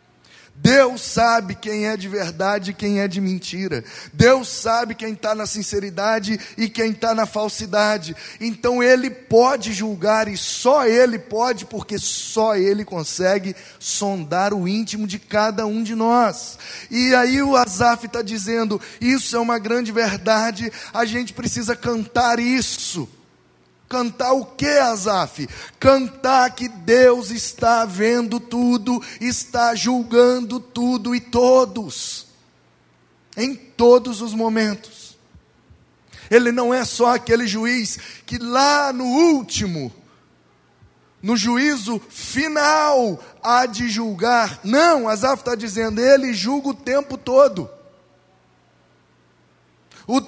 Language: Portuguese